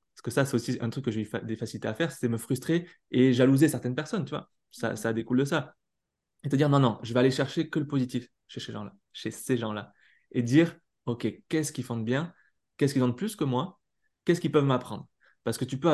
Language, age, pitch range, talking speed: French, 20-39, 120-145 Hz, 260 wpm